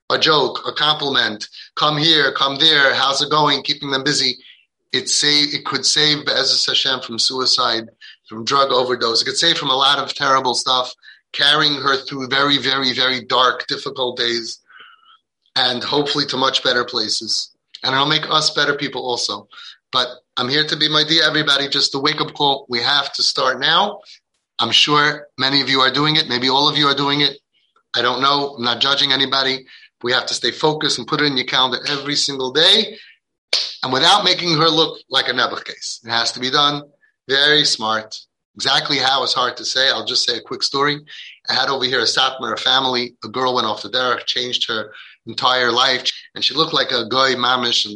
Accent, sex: American, male